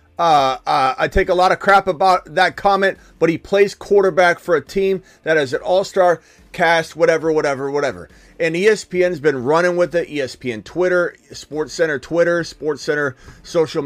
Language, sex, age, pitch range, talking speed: English, male, 30-49, 140-180 Hz, 170 wpm